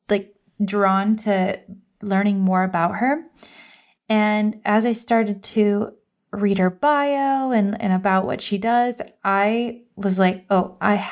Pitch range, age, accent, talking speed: 195-230 Hz, 20-39, American, 135 wpm